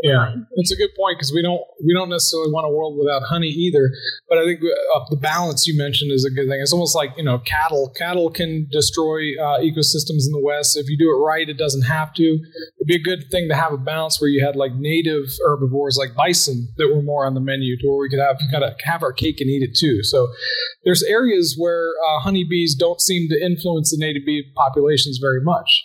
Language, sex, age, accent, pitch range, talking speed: English, male, 30-49, American, 135-160 Hz, 245 wpm